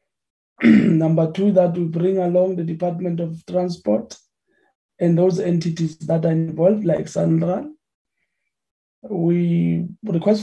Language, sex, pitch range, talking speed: English, male, 165-190 Hz, 115 wpm